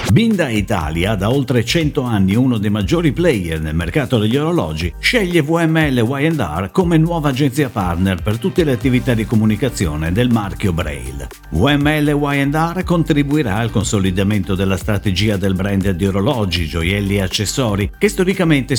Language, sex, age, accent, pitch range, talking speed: Italian, male, 50-69, native, 100-145 Hz, 145 wpm